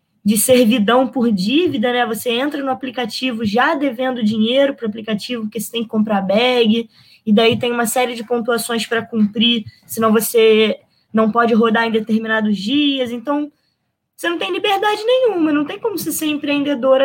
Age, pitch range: 20-39, 225-290 Hz